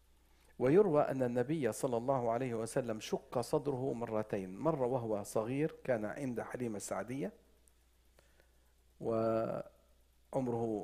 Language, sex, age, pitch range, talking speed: English, male, 50-69, 110-155 Hz, 100 wpm